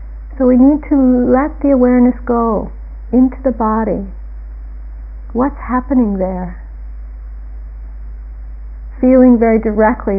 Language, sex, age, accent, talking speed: English, female, 60-79, American, 100 wpm